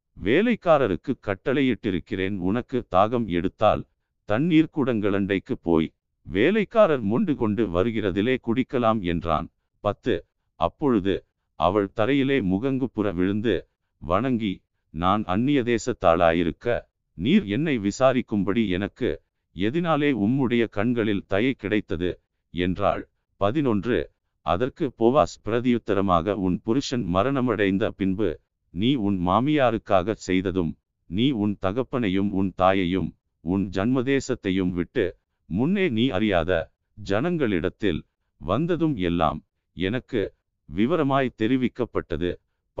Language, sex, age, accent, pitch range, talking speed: Tamil, male, 50-69, native, 95-130 Hz, 85 wpm